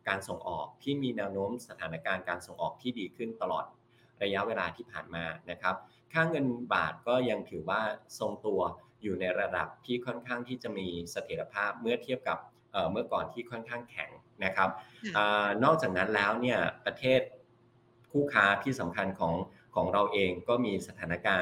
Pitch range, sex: 95-125 Hz, male